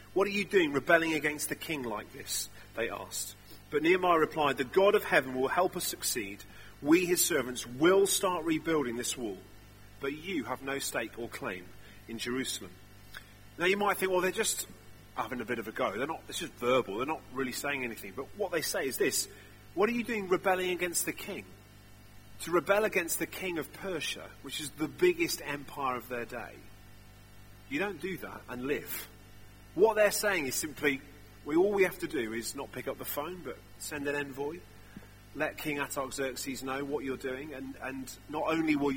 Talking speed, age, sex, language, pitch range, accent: 200 wpm, 40-59, male, English, 105-165 Hz, British